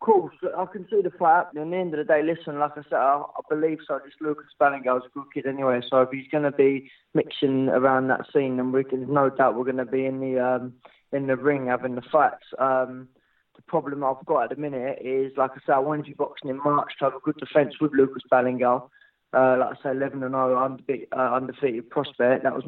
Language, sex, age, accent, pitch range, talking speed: English, male, 20-39, British, 125-145 Hz, 250 wpm